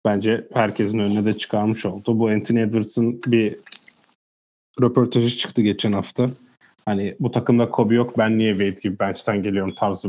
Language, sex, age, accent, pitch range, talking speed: Turkish, male, 30-49, native, 105-120 Hz, 155 wpm